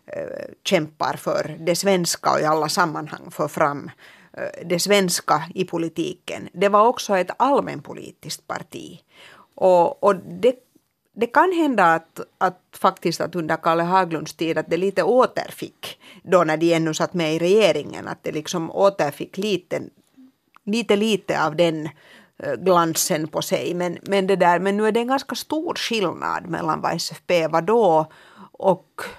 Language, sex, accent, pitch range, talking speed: Swedish, female, Finnish, 165-200 Hz, 155 wpm